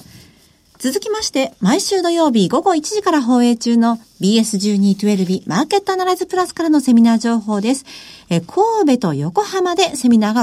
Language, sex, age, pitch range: Japanese, female, 50-69, 200-295 Hz